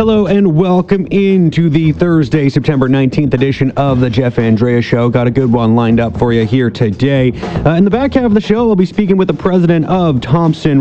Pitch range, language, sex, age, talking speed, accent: 125-160 Hz, English, male, 30-49, 220 wpm, American